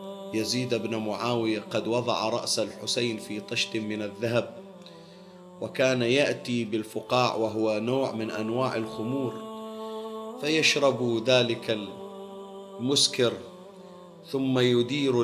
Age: 40-59